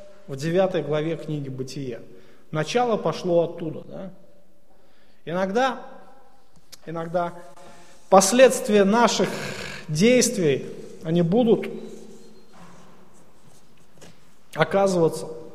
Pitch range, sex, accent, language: 160-200 Hz, male, native, Russian